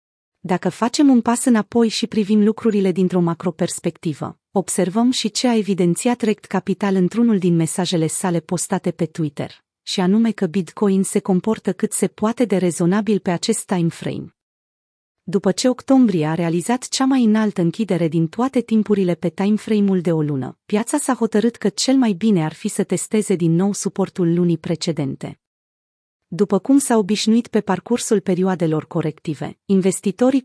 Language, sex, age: Romanian, female, 30-49